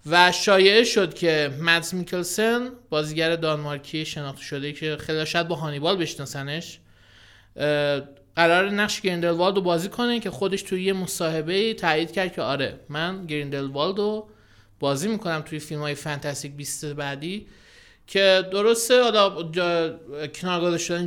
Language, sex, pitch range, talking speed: Persian, male, 145-185 Hz, 135 wpm